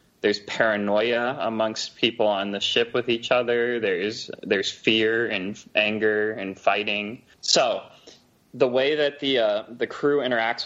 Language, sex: English, male